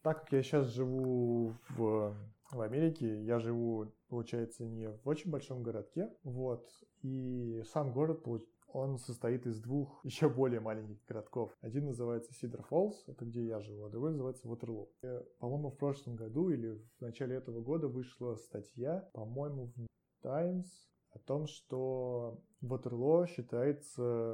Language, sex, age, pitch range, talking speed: Russian, male, 20-39, 115-135 Hz, 145 wpm